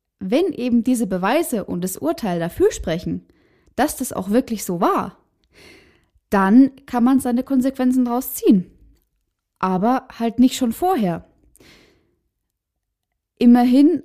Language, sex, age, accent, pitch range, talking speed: German, female, 10-29, German, 200-255 Hz, 120 wpm